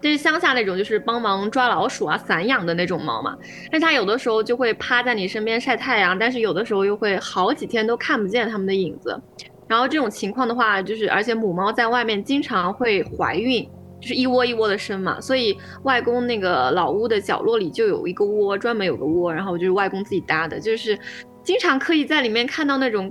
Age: 20-39